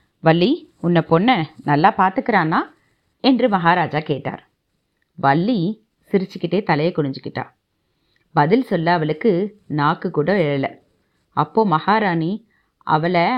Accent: native